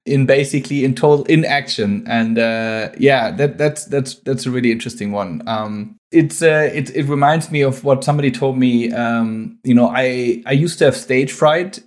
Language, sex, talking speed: English, male, 195 wpm